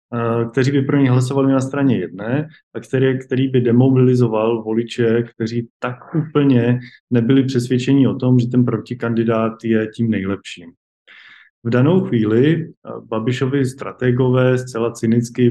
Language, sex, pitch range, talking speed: Slovak, male, 120-130 Hz, 130 wpm